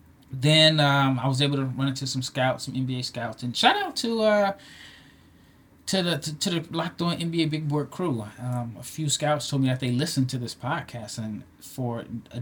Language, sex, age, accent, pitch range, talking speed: English, male, 20-39, American, 125-145 Hz, 215 wpm